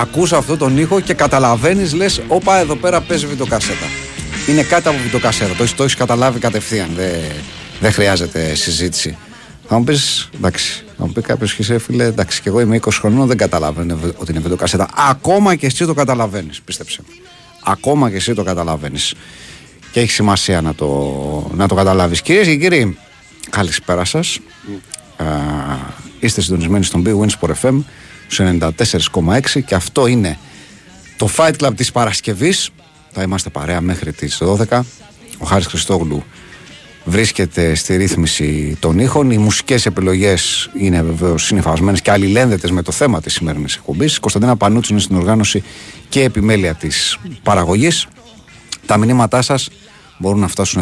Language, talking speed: Greek, 150 wpm